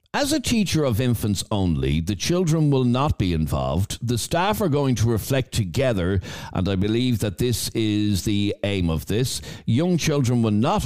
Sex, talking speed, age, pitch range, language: male, 180 wpm, 60-79, 95-125 Hz, English